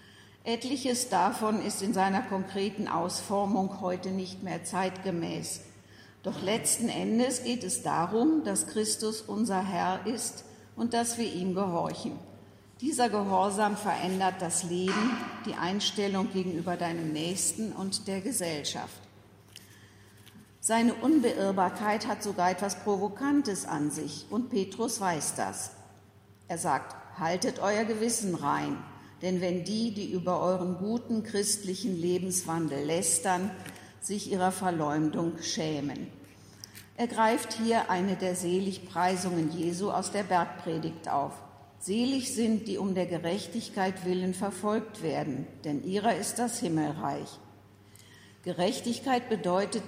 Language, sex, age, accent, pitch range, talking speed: German, female, 50-69, German, 165-215 Hz, 120 wpm